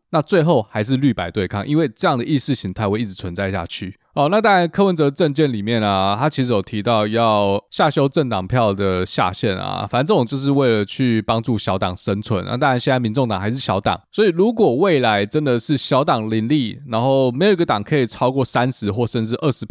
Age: 20-39